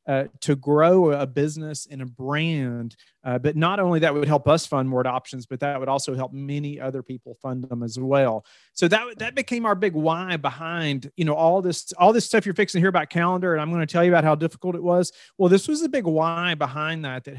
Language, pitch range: English, 135-165 Hz